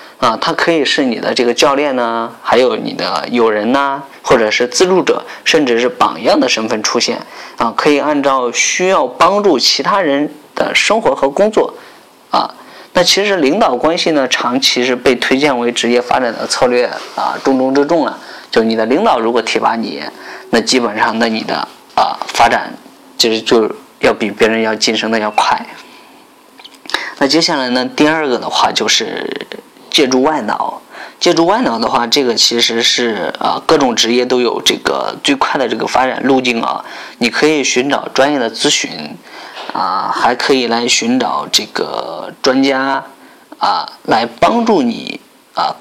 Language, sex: Chinese, male